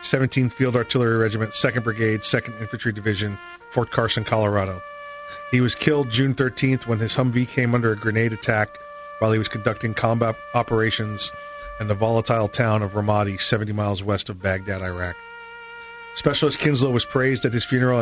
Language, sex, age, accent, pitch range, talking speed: English, male, 40-59, American, 110-135 Hz, 165 wpm